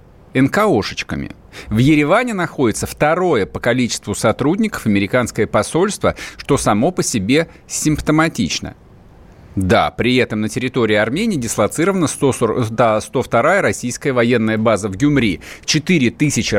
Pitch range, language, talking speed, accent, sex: 100-145 Hz, Russian, 110 wpm, native, male